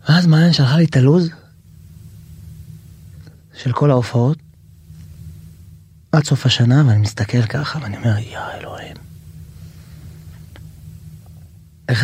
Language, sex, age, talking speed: Hebrew, male, 30-49, 100 wpm